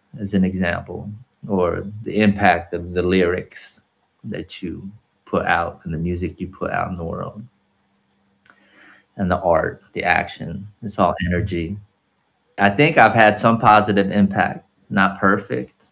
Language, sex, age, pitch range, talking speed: English, male, 30-49, 85-100 Hz, 145 wpm